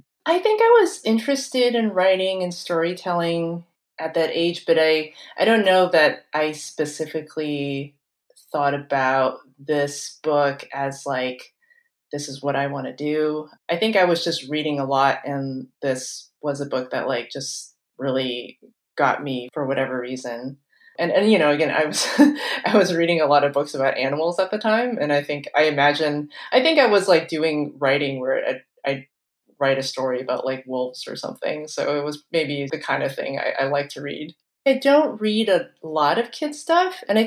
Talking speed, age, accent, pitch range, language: 195 wpm, 20-39, American, 140-180 Hz, English